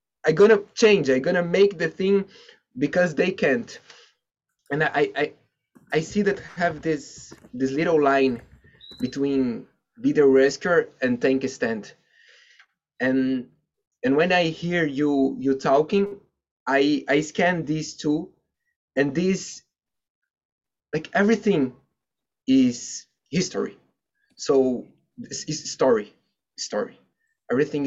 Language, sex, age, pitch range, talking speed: English, male, 20-39, 150-205 Hz, 125 wpm